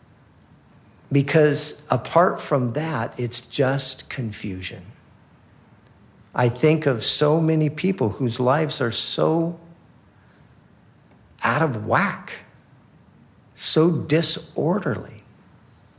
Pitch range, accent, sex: 125-150 Hz, American, male